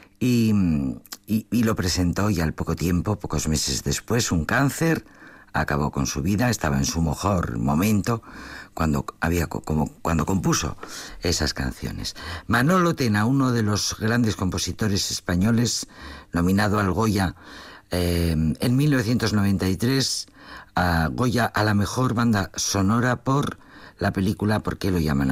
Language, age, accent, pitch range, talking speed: Spanish, 50-69, Spanish, 80-115 Hz, 135 wpm